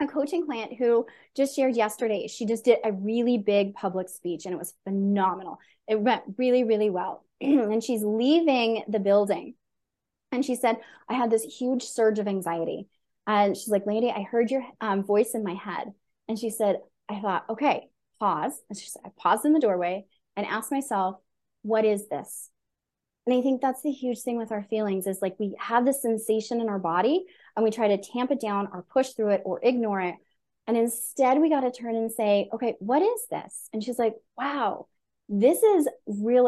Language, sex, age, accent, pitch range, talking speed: English, female, 20-39, American, 205-260 Hz, 205 wpm